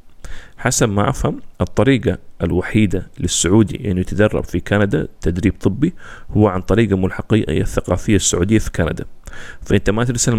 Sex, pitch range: male, 90-115 Hz